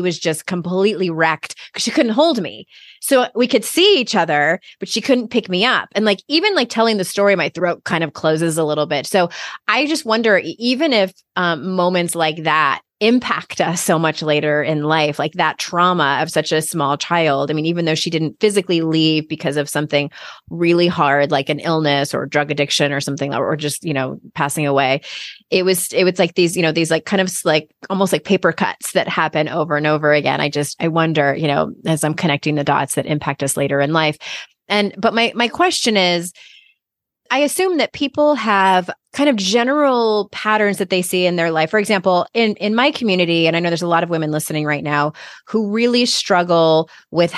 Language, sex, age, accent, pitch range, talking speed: English, female, 20-39, American, 155-220 Hz, 215 wpm